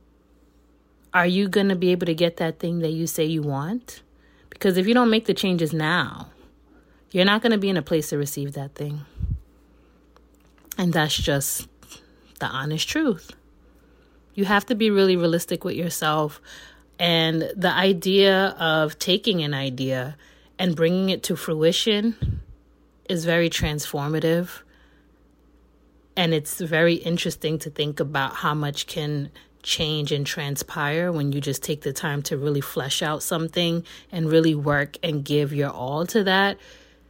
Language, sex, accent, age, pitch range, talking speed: English, female, American, 30-49, 145-180 Hz, 155 wpm